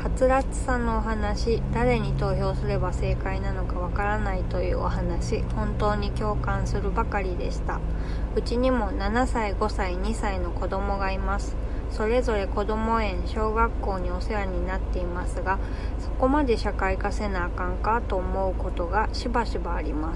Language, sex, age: Japanese, female, 20-39